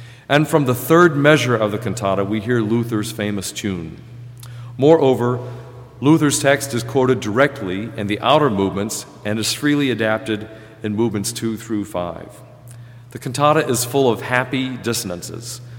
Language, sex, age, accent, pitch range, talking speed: English, male, 40-59, American, 110-130 Hz, 150 wpm